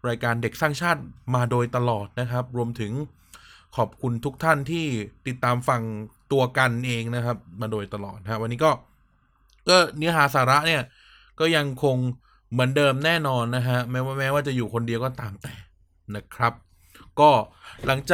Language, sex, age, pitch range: Thai, male, 20-39, 115-145 Hz